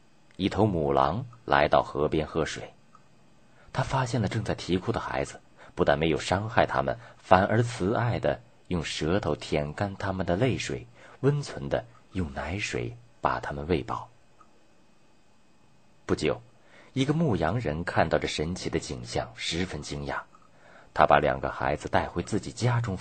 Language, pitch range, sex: Chinese, 75-120 Hz, male